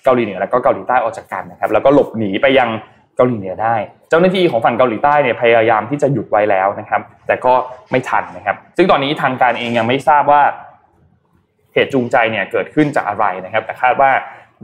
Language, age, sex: Thai, 20-39, male